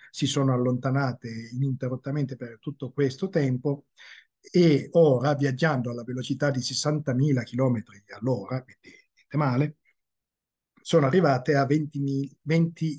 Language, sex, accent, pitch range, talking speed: Italian, male, native, 125-150 Hz, 105 wpm